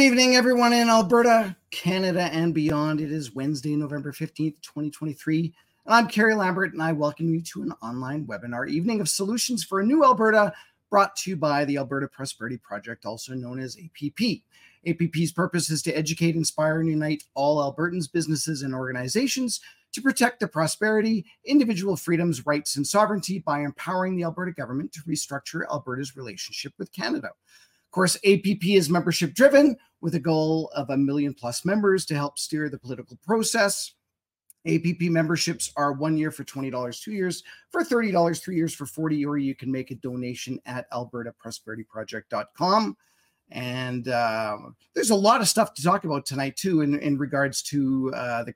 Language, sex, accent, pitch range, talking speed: English, male, American, 135-185 Hz, 170 wpm